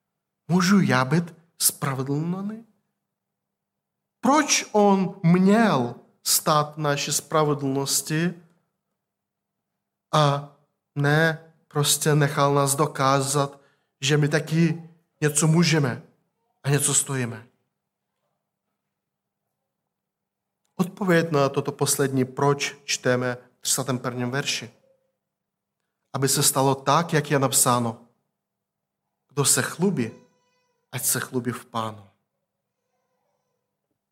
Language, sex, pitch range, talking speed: Czech, male, 140-200 Hz, 85 wpm